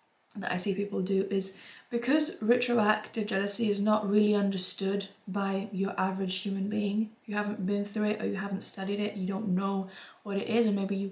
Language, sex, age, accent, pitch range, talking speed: English, female, 10-29, British, 195-225 Hz, 200 wpm